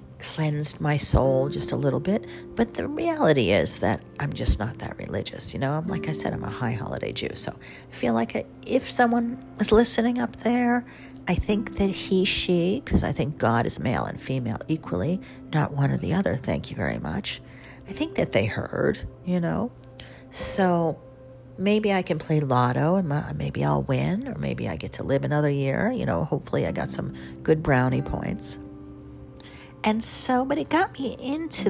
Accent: American